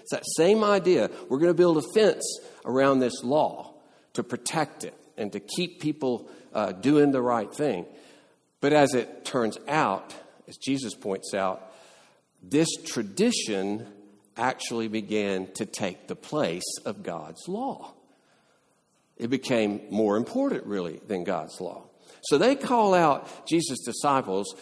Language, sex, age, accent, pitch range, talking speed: English, male, 50-69, American, 100-140 Hz, 145 wpm